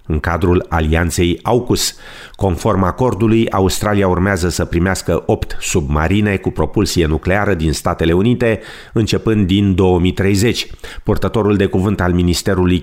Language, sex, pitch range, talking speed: Romanian, male, 90-120 Hz, 120 wpm